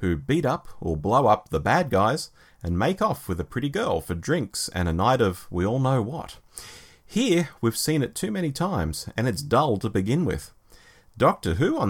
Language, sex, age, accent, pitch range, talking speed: English, male, 30-49, Australian, 90-140 Hz, 210 wpm